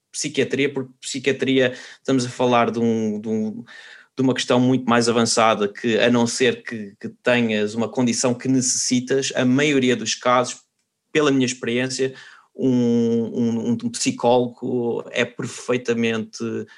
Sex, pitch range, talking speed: male, 115-135 Hz, 145 wpm